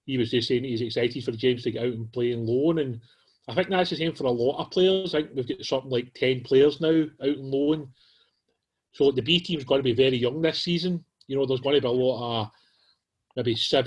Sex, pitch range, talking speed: male, 125-150 Hz, 255 wpm